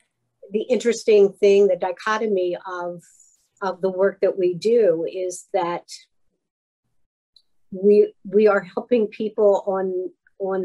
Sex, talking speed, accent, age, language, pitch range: female, 120 wpm, American, 50-69, English, 175-205 Hz